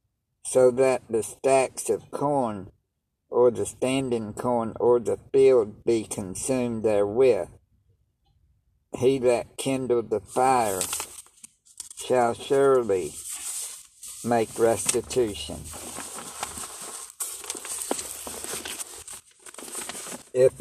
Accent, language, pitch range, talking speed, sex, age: American, English, 110-135 Hz, 75 wpm, male, 60-79